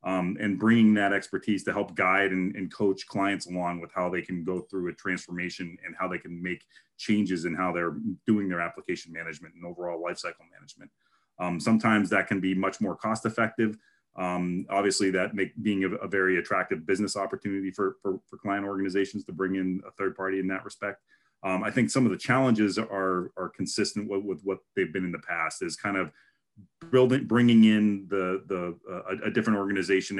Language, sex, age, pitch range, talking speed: English, male, 30-49, 90-100 Hz, 205 wpm